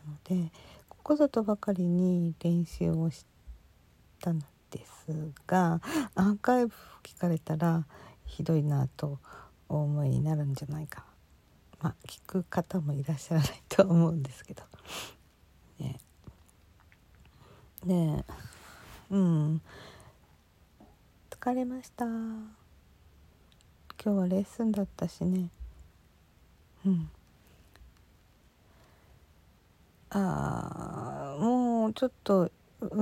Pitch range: 145-215 Hz